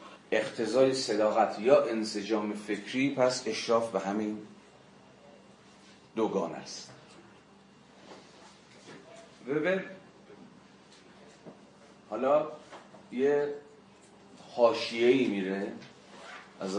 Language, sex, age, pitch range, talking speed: Persian, male, 40-59, 95-125 Hz, 65 wpm